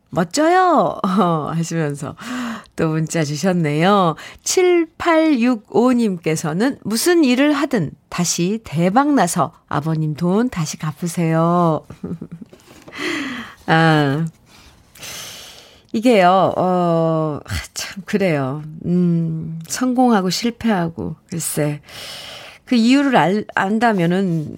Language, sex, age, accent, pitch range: Korean, female, 40-59, native, 160-245 Hz